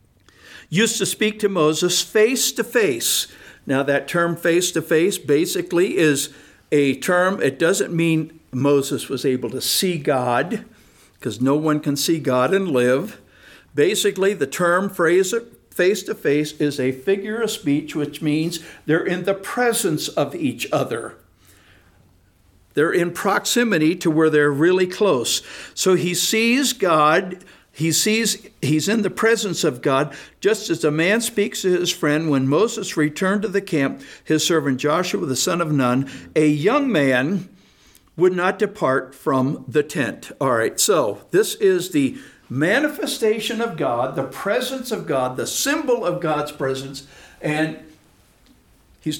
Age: 60-79